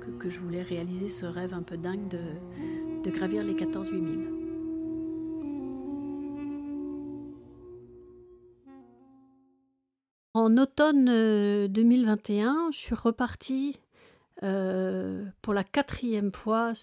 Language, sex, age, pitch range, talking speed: French, female, 40-59, 185-230 Hz, 95 wpm